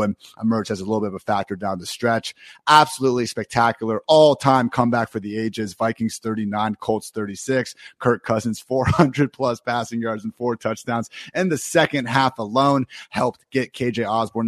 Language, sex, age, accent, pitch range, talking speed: English, male, 30-49, American, 110-125 Hz, 165 wpm